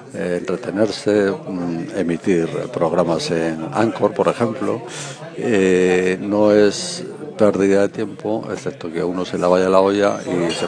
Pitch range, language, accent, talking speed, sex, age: 90-100 Hz, Spanish, Spanish, 135 wpm, male, 50-69